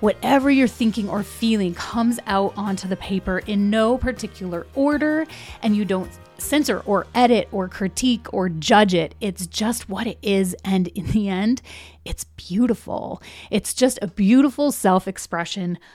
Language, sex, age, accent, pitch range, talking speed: English, female, 30-49, American, 185-245 Hz, 155 wpm